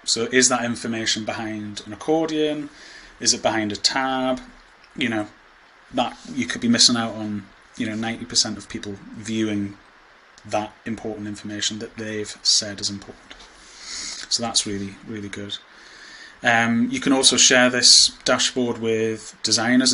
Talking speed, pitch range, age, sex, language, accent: 145 wpm, 110-125 Hz, 30-49, male, English, British